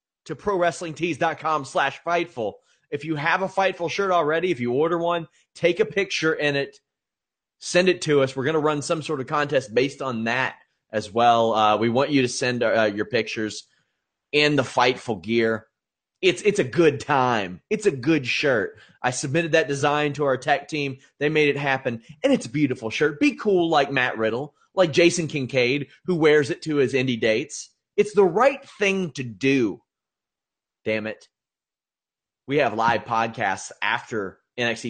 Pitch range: 115-160 Hz